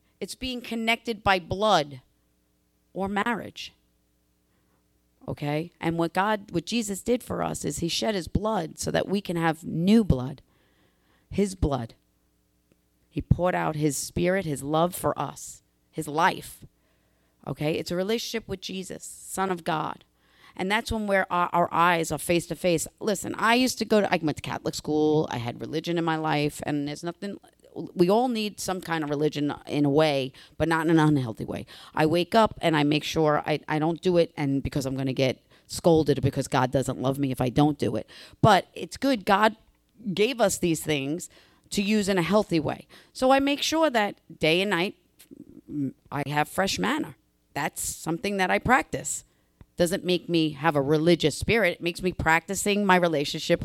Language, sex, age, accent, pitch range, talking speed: English, female, 40-59, American, 145-195 Hz, 190 wpm